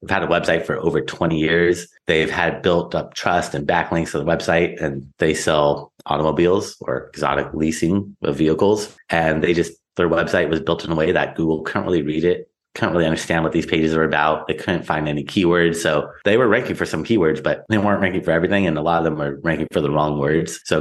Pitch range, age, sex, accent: 75-85 Hz, 30-49, male, American